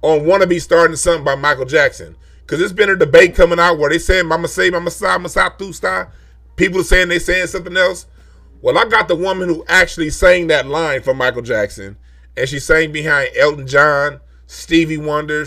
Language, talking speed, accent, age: English, 215 wpm, American, 30-49